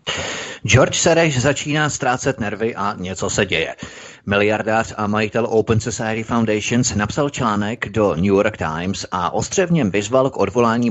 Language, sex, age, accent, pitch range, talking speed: Czech, male, 30-49, native, 95-115 Hz, 145 wpm